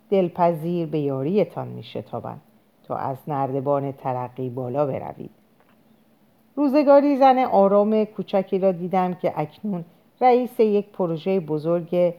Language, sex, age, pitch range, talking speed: Persian, female, 40-59, 150-205 Hz, 115 wpm